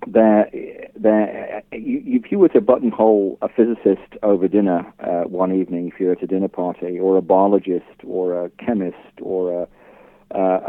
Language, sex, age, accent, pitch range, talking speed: English, male, 50-69, British, 95-110 Hz, 170 wpm